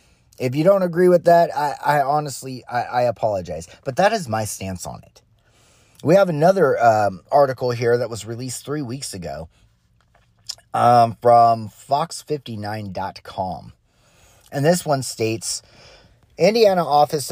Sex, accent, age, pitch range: male, American, 30-49, 110-160 Hz